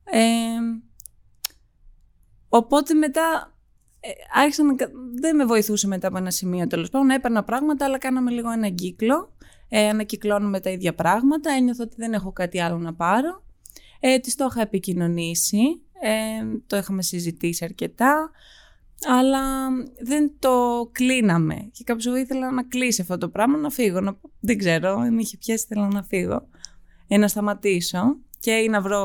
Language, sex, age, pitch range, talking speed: Greek, female, 20-39, 170-245 Hz, 155 wpm